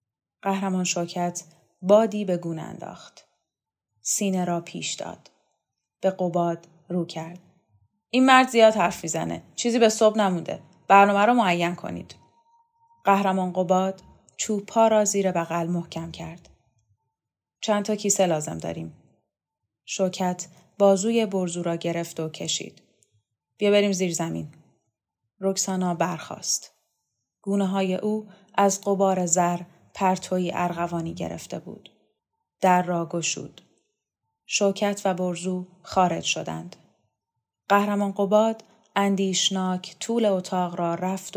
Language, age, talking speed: Persian, 30-49, 110 wpm